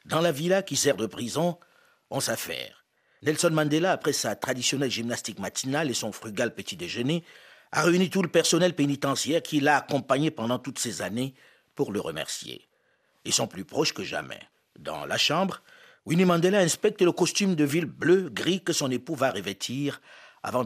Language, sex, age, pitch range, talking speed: French, male, 50-69, 125-170 Hz, 175 wpm